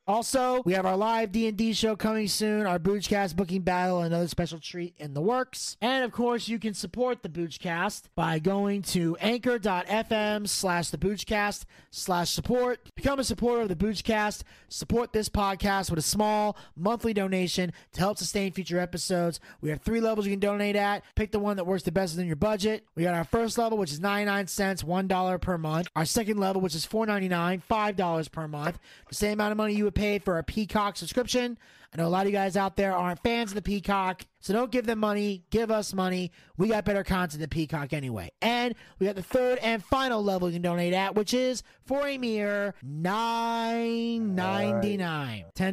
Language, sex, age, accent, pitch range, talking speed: English, male, 20-39, American, 180-220 Hz, 200 wpm